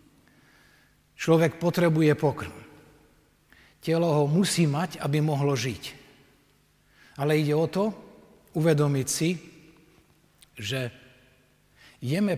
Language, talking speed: Slovak, 85 wpm